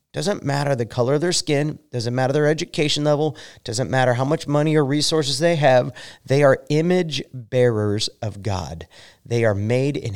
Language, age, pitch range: English, 30-49, 110-150 Hz